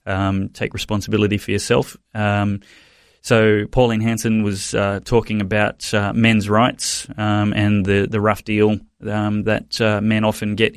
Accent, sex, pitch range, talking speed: Australian, male, 100-115 Hz, 155 wpm